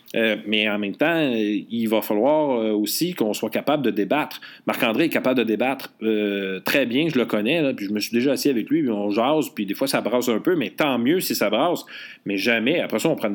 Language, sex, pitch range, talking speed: French, male, 105-165 Hz, 260 wpm